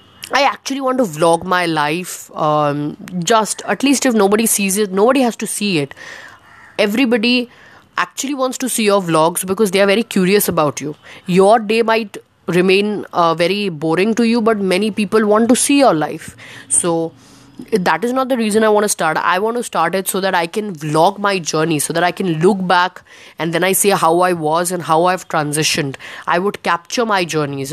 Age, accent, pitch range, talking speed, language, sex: 20-39, Indian, 155-200 Hz, 205 wpm, English, female